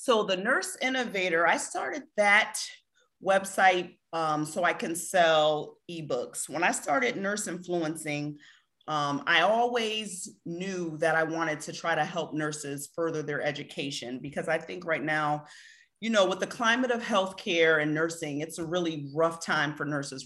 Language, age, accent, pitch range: English, 40-59, American, 150-185 Hz